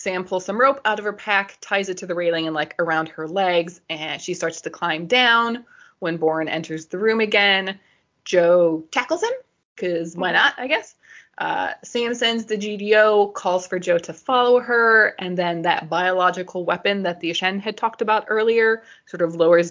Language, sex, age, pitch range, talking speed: English, female, 20-39, 170-215 Hz, 195 wpm